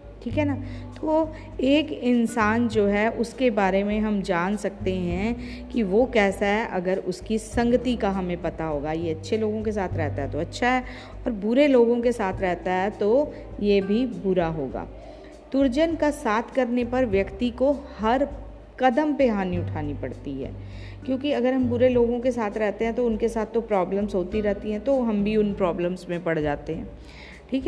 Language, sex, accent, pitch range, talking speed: Hindi, female, native, 195-250 Hz, 195 wpm